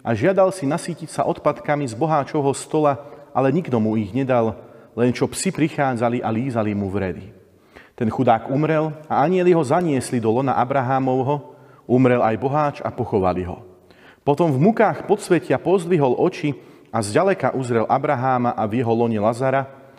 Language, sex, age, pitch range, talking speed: Slovak, male, 30-49, 120-155 Hz, 165 wpm